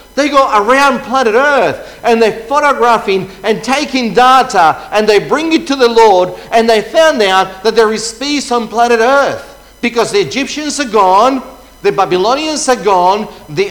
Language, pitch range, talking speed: English, 195-255 Hz, 170 wpm